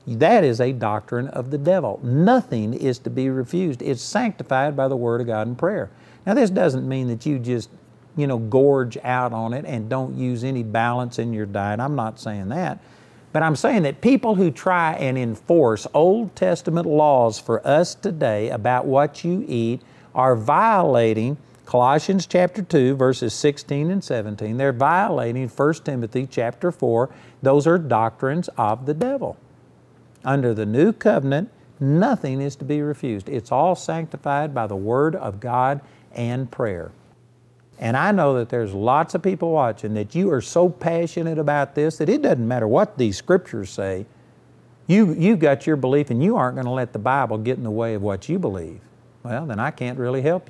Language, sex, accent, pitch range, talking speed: English, male, American, 120-160 Hz, 185 wpm